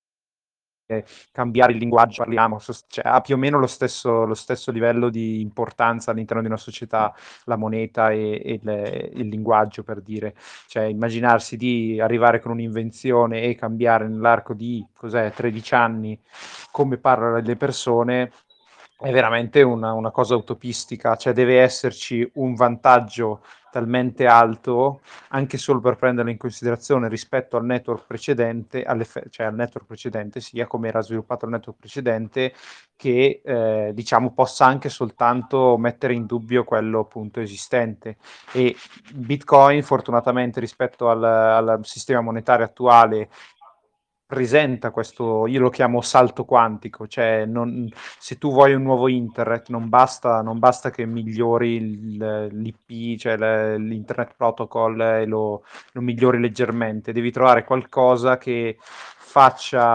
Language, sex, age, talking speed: Italian, male, 30-49, 135 wpm